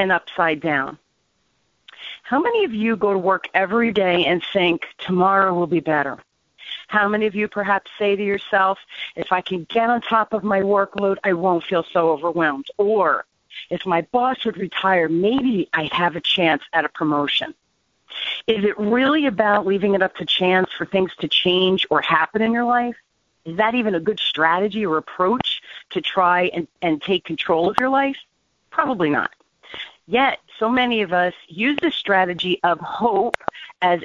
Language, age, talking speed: English, 40-59, 180 wpm